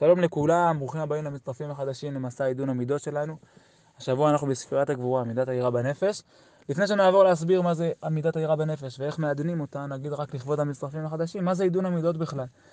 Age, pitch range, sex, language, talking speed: 20-39, 145-180 Hz, male, Hebrew, 180 wpm